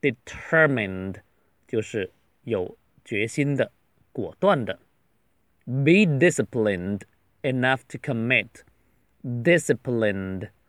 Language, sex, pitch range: Chinese, male, 85-135 Hz